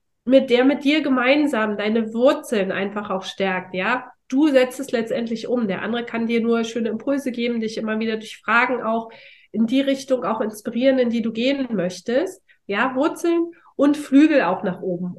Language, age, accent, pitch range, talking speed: German, 30-49, German, 225-270 Hz, 185 wpm